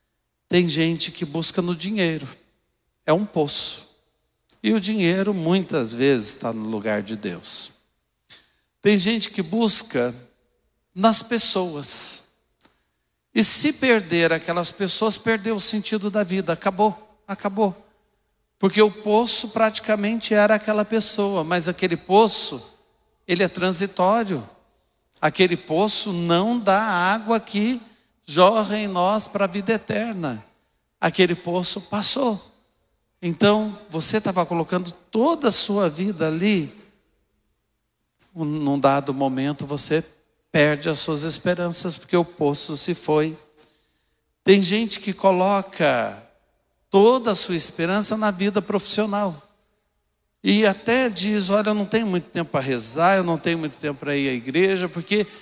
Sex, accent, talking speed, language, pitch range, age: male, Brazilian, 130 wpm, Portuguese, 160-210 Hz, 60-79